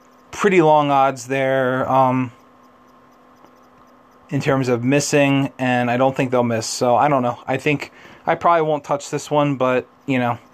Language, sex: English, male